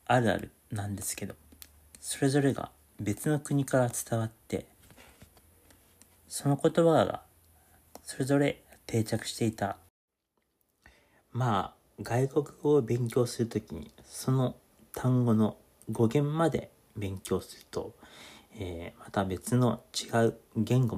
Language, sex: Japanese, male